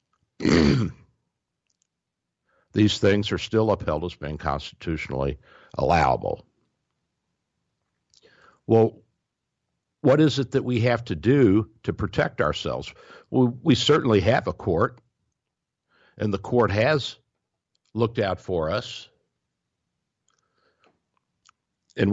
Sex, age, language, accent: male, 60-79, English, American